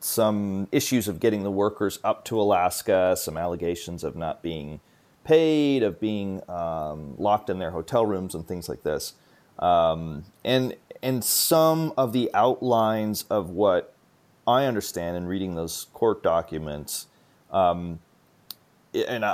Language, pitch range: English, 90-115 Hz